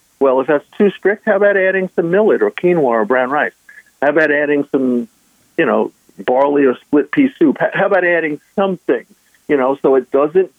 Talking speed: 200 wpm